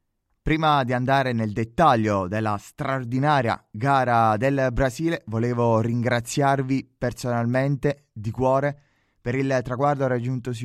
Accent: native